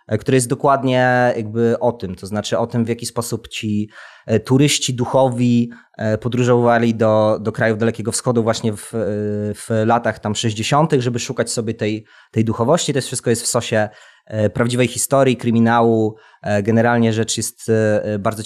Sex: male